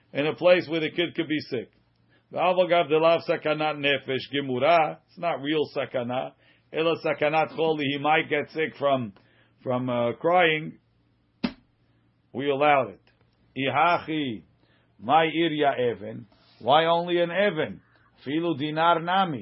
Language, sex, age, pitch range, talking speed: English, male, 50-69, 130-170 Hz, 85 wpm